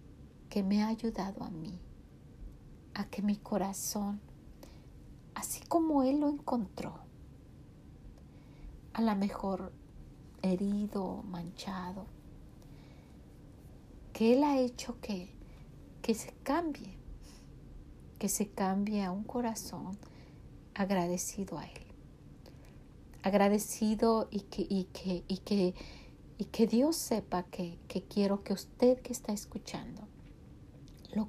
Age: 40-59